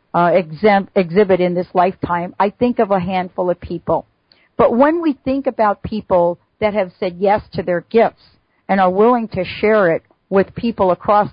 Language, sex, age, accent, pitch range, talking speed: English, female, 50-69, American, 185-225 Hz, 185 wpm